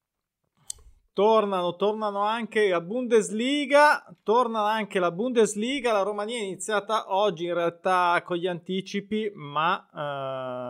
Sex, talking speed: male, 120 wpm